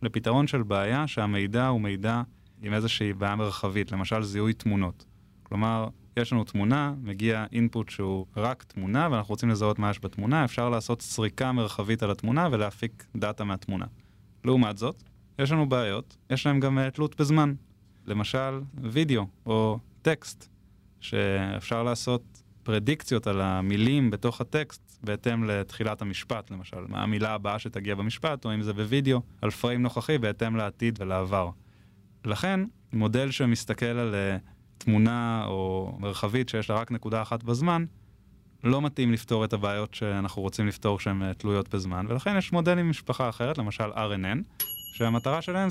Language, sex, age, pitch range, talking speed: Hebrew, male, 20-39, 100-125 Hz, 140 wpm